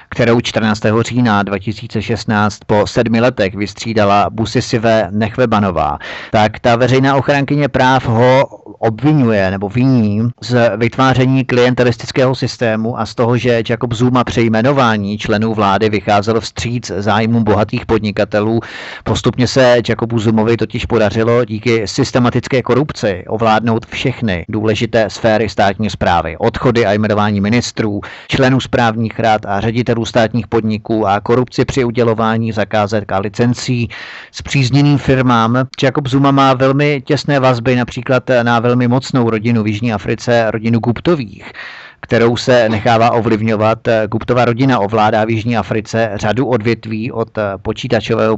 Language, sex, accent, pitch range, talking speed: Czech, male, native, 110-125 Hz, 130 wpm